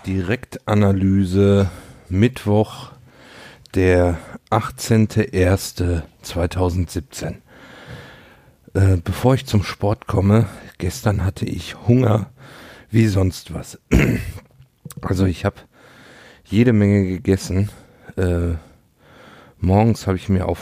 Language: German